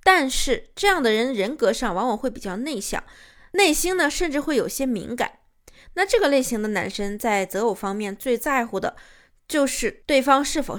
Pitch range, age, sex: 215-270 Hz, 20-39, female